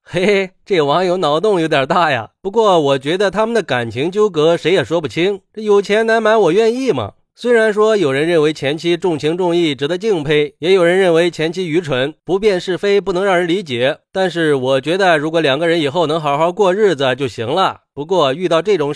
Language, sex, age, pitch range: Chinese, male, 20-39, 150-195 Hz